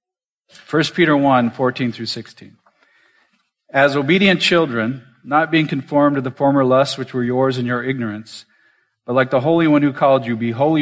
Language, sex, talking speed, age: English, male, 175 wpm, 40-59